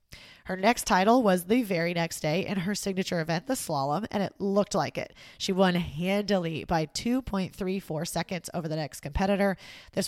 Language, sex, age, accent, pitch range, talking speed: English, female, 20-39, American, 175-205 Hz, 180 wpm